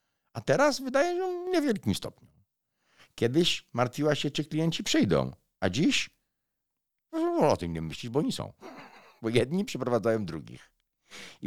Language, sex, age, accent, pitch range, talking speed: Polish, male, 50-69, native, 80-135 Hz, 145 wpm